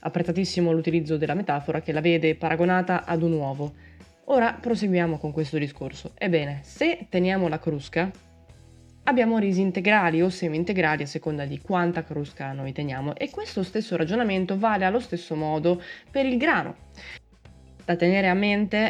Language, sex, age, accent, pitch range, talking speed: Italian, female, 20-39, native, 155-210 Hz, 155 wpm